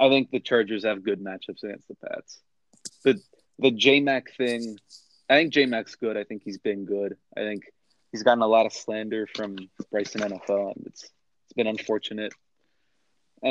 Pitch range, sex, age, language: 105-125 Hz, male, 20-39, English